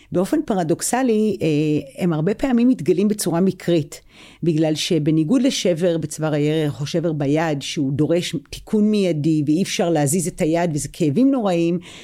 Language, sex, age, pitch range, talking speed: Hebrew, female, 40-59, 160-210 Hz, 140 wpm